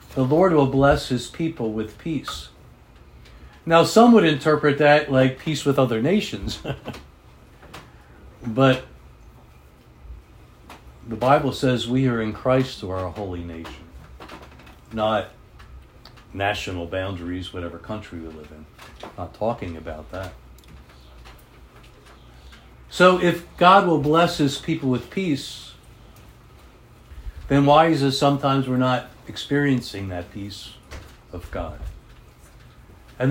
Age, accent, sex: 60-79, American, male